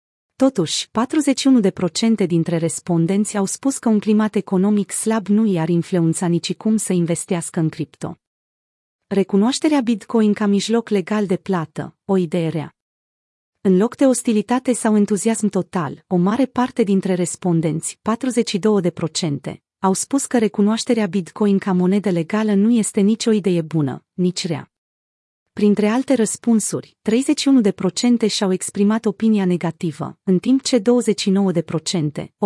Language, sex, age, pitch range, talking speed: Romanian, female, 30-49, 175-220 Hz, 130 wpm